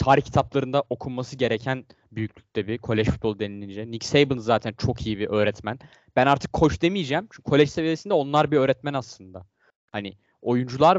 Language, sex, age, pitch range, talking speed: Turkish, male, 10-29, 120-155 Hz, 155 wpm